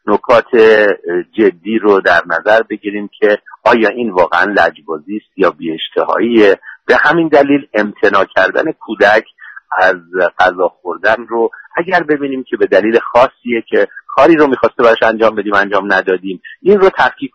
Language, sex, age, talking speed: Persian, male, 50-69, 140 wpm